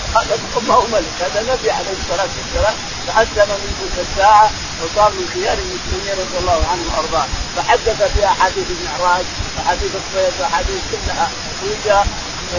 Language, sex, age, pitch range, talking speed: Arabic, male, 30-49, 170-220 Hz, 145 wpm